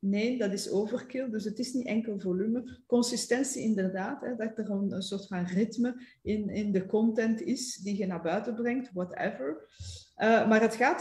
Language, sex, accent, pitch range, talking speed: English, female, Dutch, 190-235 Hz, 185 wpm